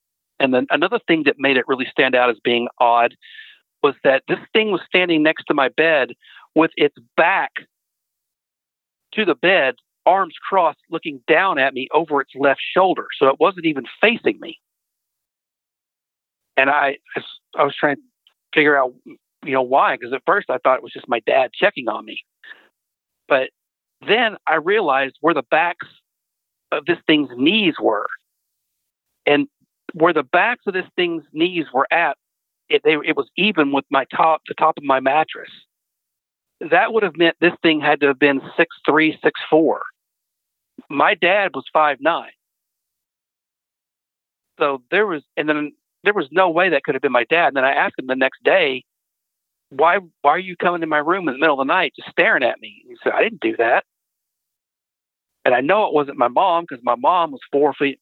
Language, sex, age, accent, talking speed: English, male, 50-69, American, 190 wpm